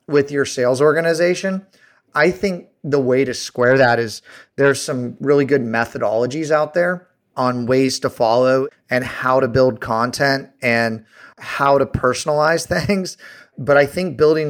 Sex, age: male, 30-49